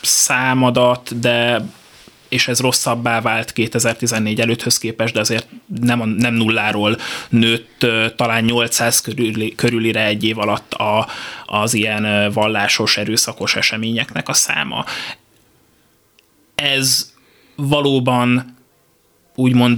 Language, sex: Hungarian, male